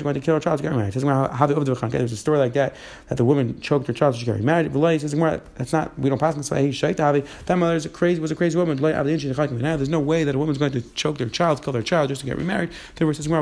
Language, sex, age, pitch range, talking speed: English, male, 30-49, 125-150 Hz, 270 wpm